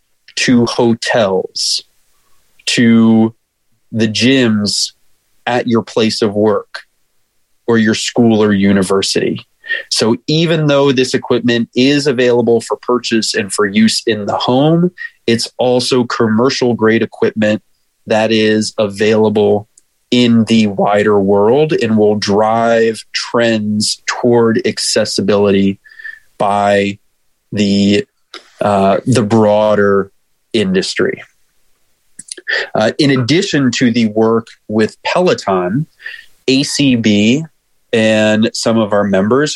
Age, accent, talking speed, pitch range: 30-49, American, 105 wpm, 105-125 Hz